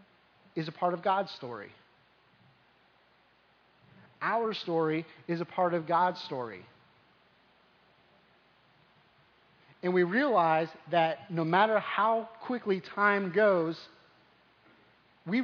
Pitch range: 165-195 Hz